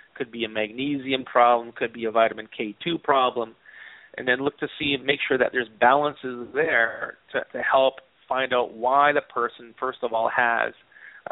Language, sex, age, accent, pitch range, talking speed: English, male, 40-59, American, 120-140 Hz, 185 wpm